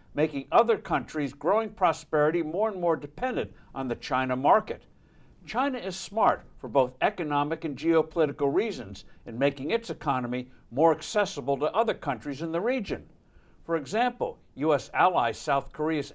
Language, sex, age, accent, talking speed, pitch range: English, male, 60-79, American, 150 wpm, 140-175 Hz